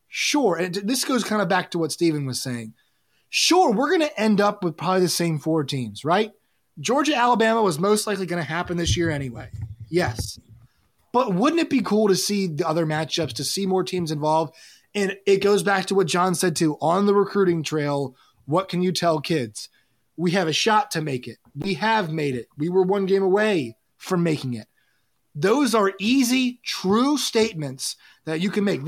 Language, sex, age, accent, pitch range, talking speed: English, male, 20-39, American, 160-230 Hz, 200 wpm